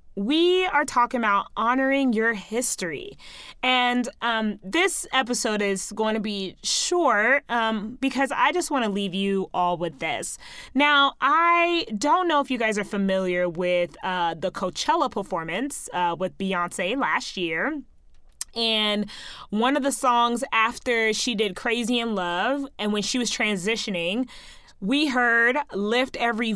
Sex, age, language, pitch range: female, 20-39, English, 195-270 Hz